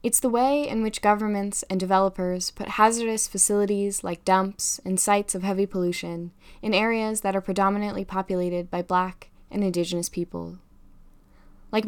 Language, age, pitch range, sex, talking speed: English, 10-29, 180-205 Hz, female, 150 wpm